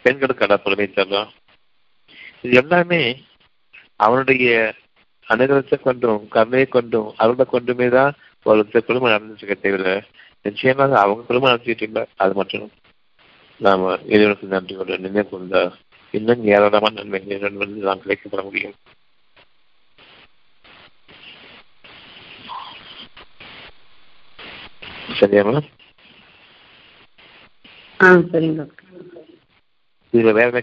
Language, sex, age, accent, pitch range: Tamil, male, 50-69, native, 100-130 Hz